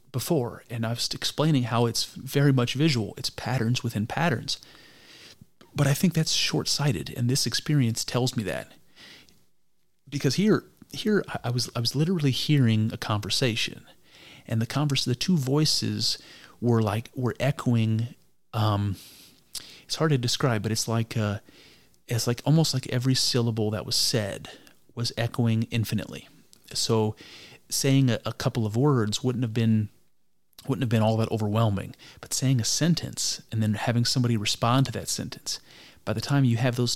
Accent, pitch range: American, 115-140 Hz